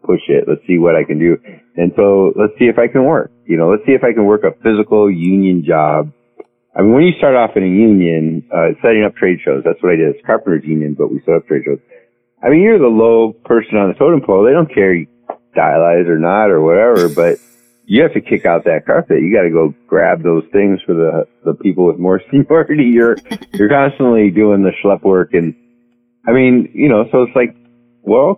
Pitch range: 85-120 Hz